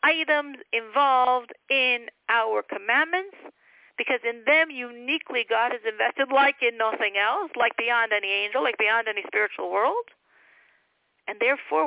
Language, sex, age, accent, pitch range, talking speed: English, female, 50-69, American, 230-345 Hz, 135 wpm